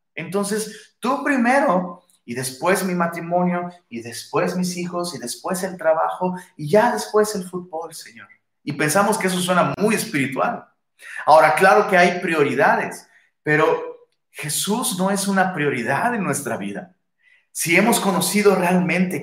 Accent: Mexican